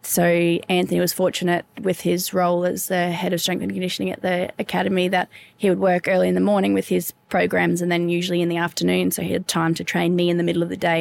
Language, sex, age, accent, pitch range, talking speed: English, female, 20-39, Australian, 160-180 Hz, 255 wpm